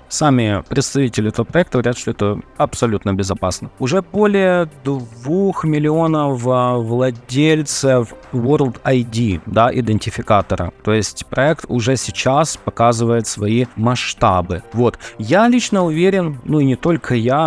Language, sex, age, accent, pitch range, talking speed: Russian, male, 20-39, native, 110-145 Hz, 120 wpm